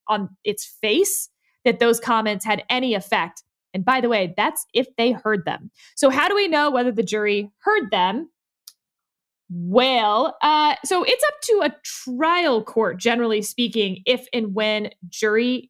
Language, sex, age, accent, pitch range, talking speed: English, female, 20-39, American, 210-295 Hz, 165 wpm